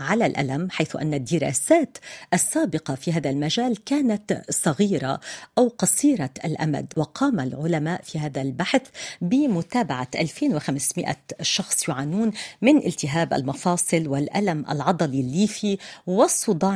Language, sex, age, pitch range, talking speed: Arabic, female, 40-59, 150-210 Hz, 105 wpm